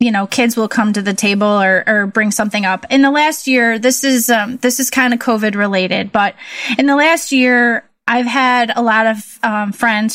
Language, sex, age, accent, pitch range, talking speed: English, female, 20-39, American, 225-265 Hz, 225 wpm